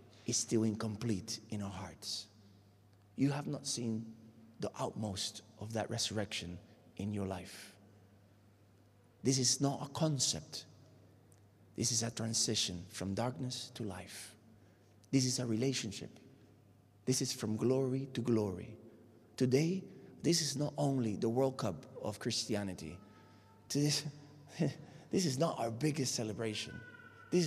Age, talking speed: 30-49, 125 wpm